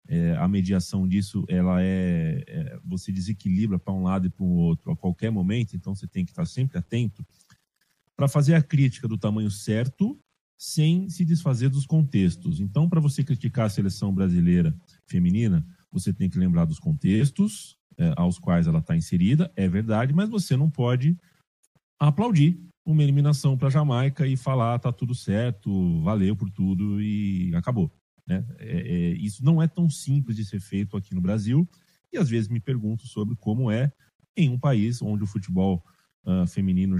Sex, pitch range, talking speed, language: male, 95-150 Hz, 175 wpm, Portuguese